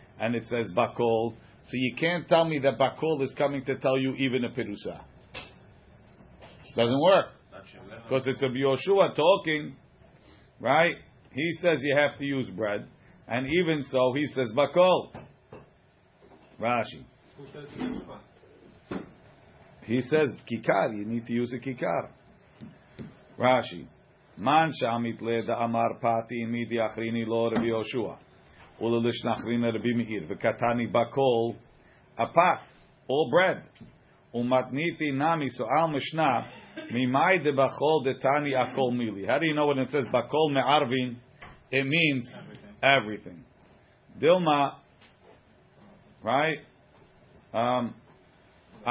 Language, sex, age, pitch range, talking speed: English, male, 50-69, 115-150 Hz, 95 wpm